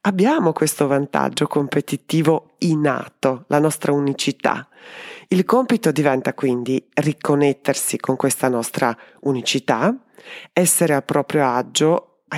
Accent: native